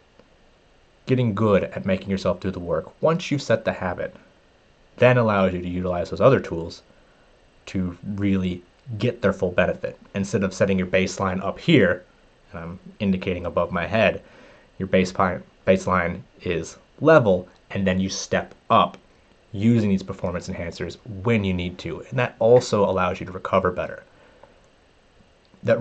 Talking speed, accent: 155 wpm, American